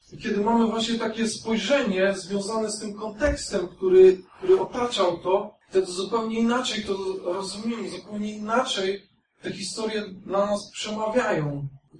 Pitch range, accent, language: 175-205 Hz, native, Polish